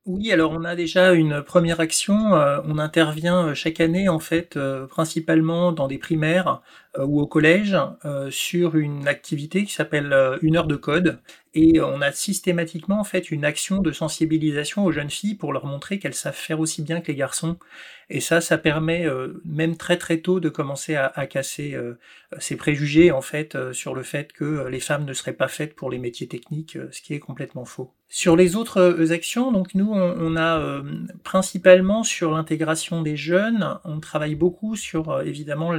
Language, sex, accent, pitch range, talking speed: French, male, French, 145-175 Hz, 195 wpm